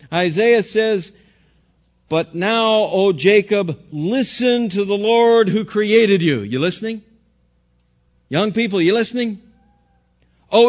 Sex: male